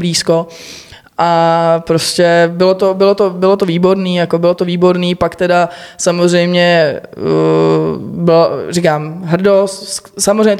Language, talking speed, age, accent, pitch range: Czech, 120 wpm, 20-39, native, 165-175 Hz